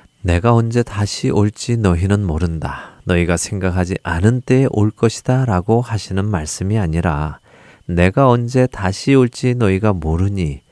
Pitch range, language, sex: 85-120 Hz, Korean, male